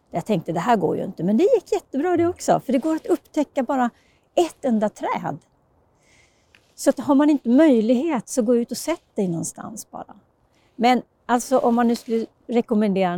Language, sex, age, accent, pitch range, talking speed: Swedish, female, 40-59, native, 200-295 Hz, 195 wpm